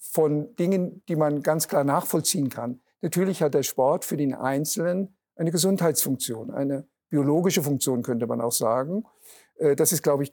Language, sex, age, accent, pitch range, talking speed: German, male, 50-69, German, 135-160 Hz, 165 wpm